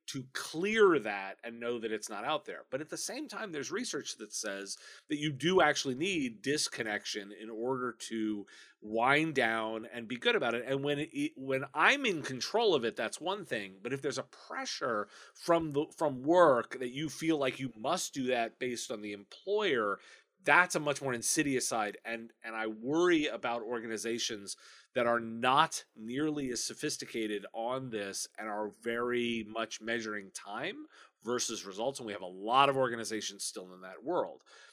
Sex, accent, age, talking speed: male, American, 30-49, 185 wpm